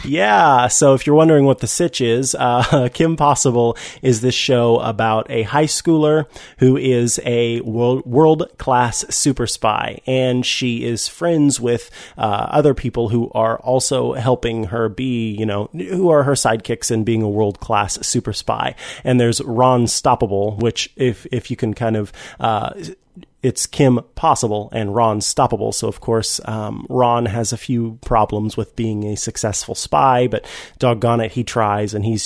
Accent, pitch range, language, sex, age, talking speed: American, 110-130 Hz, English, male, 30-49, 175 wpm